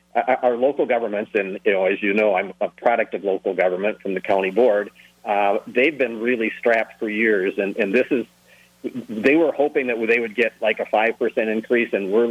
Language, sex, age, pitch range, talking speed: English, male, 40-59, 100-120 Hz, 210 wpm